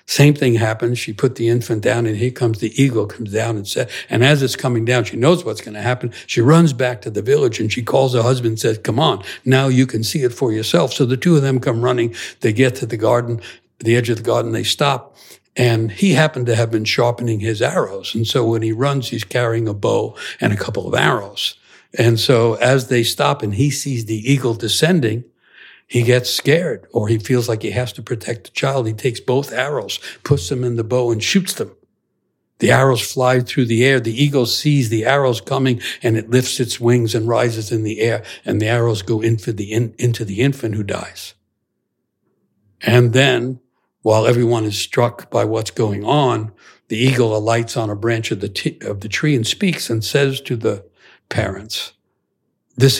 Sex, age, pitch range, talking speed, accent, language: male, 60-79, 115-130 Hz, 215 wpm, American, English